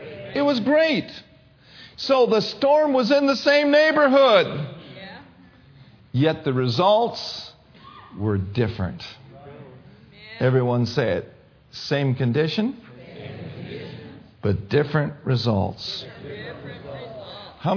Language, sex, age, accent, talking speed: English, male, 50-69, American, 85 wpm